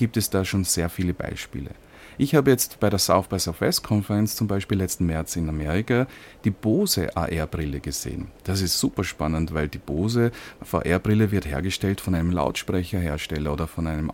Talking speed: 180 wpm